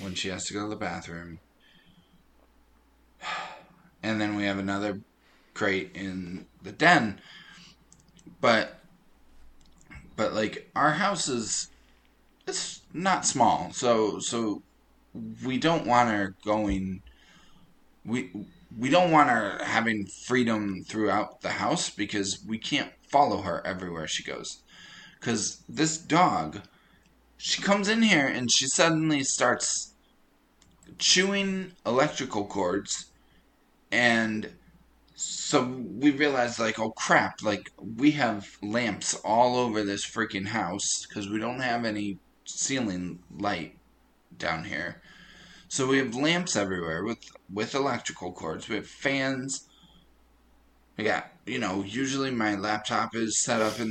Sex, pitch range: male, 100-135 Hz